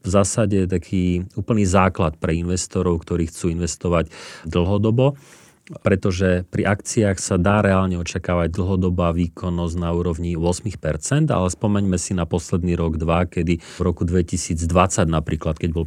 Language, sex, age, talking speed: Slovak, male, 40-59, 140 wpm